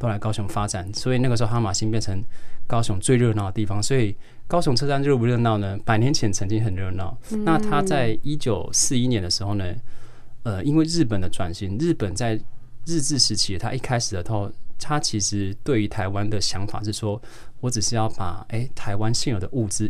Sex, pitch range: male, 105-130 Hz